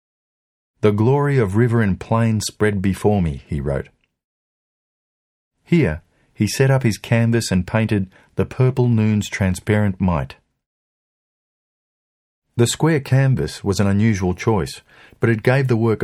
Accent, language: Australian, English